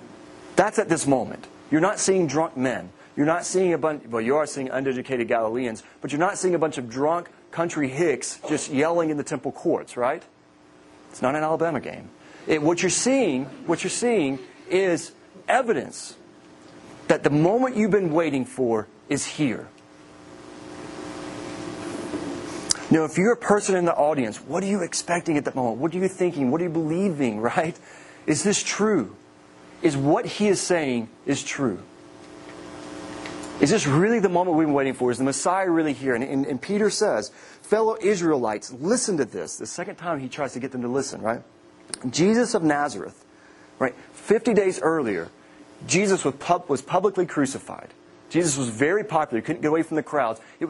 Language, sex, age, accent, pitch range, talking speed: English, male, 30-49, American, 125-180 Hz, 180 wpm